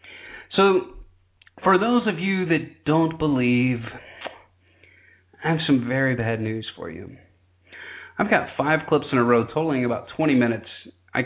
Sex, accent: male, American